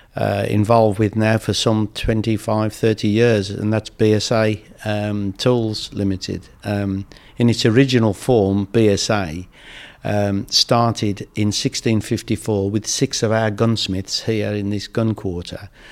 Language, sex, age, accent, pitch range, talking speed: English, male, 60-79, British, 105-115 Hz, 130 wpm